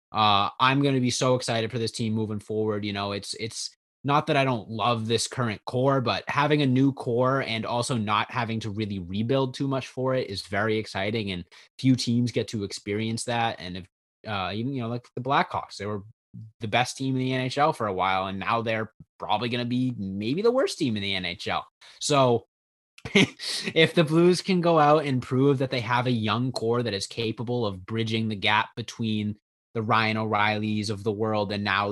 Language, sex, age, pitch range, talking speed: English, male, 20-39, 105-125 Hz, 215 wpm